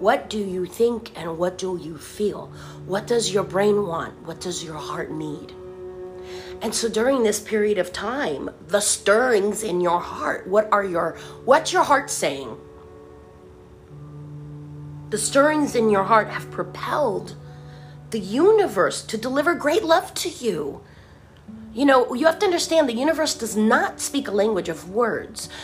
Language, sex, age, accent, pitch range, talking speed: English, female, 40-59, American, 185-240 Hz, 160 wpm